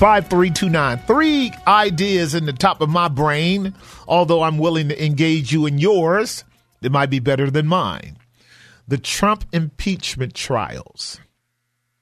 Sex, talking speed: male, 150 wpm